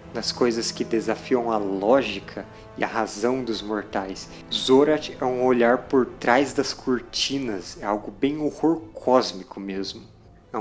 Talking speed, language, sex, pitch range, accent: 145 wpm, Portuguese, male, 105-130 Hz, Brazilian